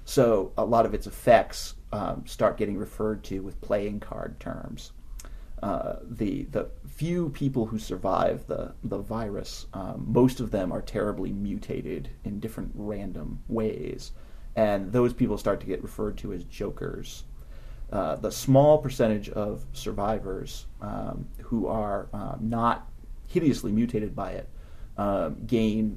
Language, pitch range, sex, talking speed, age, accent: English, 100-115 Hz, male, 145 wpm, 30-49, American